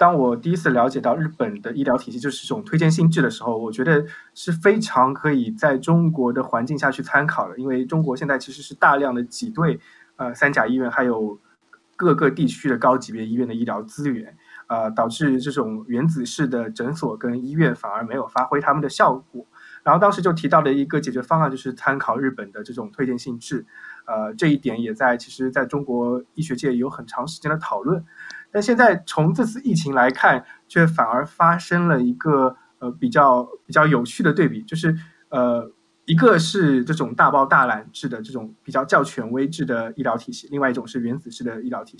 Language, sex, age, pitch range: Chinese, male, 20-39, 125-165 Hz